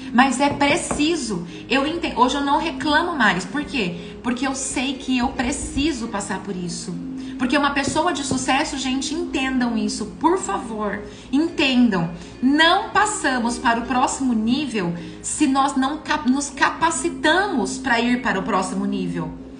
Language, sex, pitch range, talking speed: Portuguese, female, 230-310 Hz, 150 wpm